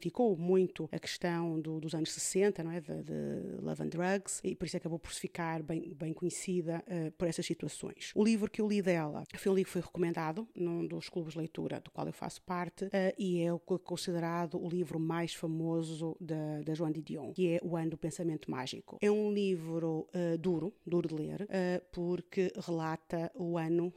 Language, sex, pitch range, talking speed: Portuguese, female, 165-180 Hz, 210 wpm